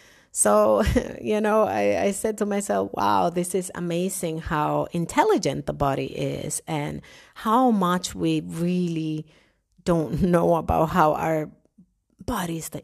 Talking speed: 135 wpm